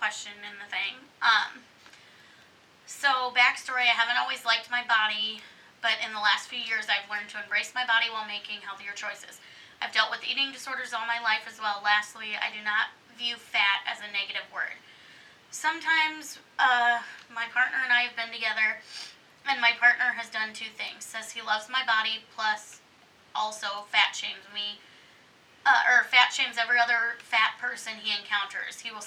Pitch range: 210-235 Hz